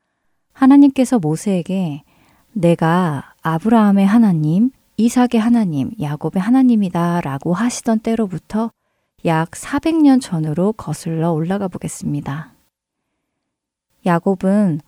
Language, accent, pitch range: Korean, native, 165-230 Hz